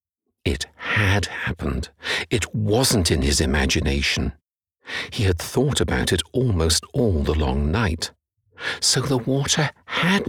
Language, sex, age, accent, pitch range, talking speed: English, male, 60-79, British, 80-110 Hz, 130 wpm